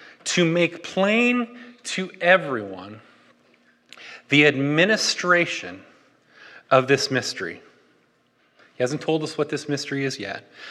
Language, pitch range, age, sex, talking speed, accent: English, 145-185 Hz, 30-49, male, 105 wpm, American